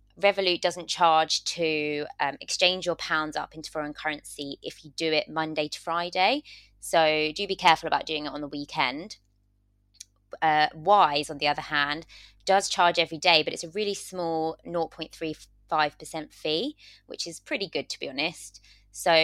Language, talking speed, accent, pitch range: English, 170 wpm, British, 140-170 Hz